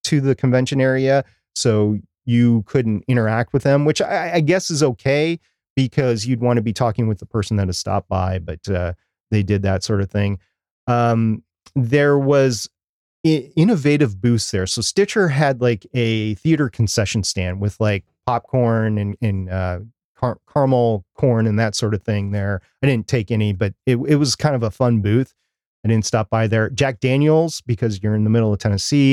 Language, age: English, 30-49